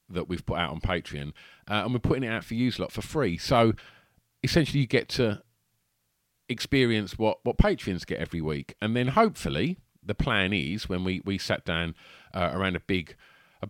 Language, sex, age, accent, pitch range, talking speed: English, male, 40-59, British, 80-110 Hz, 200 wpm